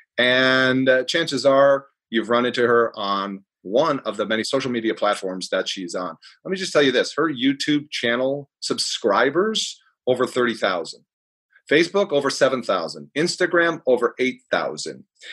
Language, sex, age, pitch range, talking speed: English, male, 30-49, 110-140 Hz, 145 wpm